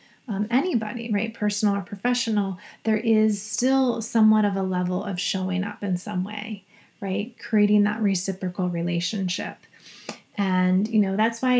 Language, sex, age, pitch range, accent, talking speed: English, female, 30-49, 185-210 Hz, American, 150 wpm